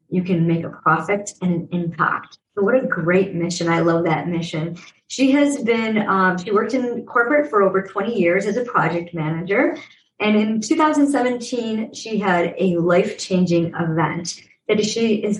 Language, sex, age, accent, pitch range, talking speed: English, male, 30-49, American, 175-220 Hz, 170 wpm